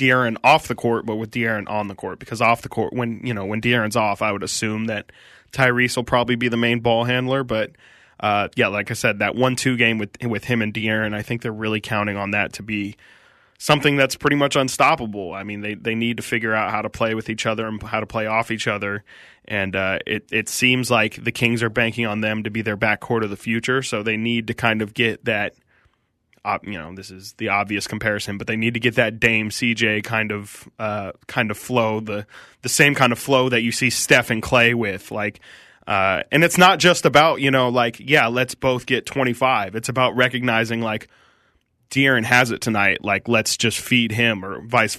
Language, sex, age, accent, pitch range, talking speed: English, male, 20-39, American, 105-125 Hz, 230 wpm